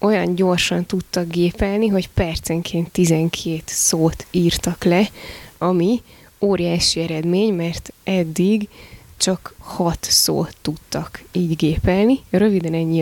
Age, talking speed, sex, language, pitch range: 20-39, 105 wpm, female, Hungarian, 170-195 Hz